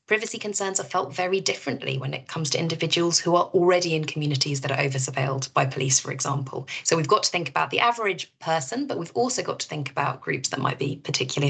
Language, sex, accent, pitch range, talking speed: English, female, British, 135-180 Hz, 235 wpm